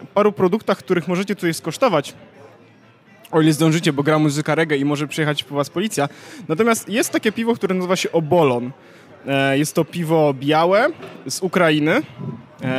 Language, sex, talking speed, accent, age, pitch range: Polish, male, 165 wpm, native, 20-39, 150-200 Hz